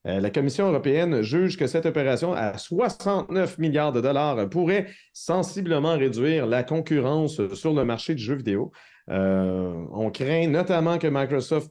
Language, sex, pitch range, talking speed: French, male, 120-165 Hz, 150 wpm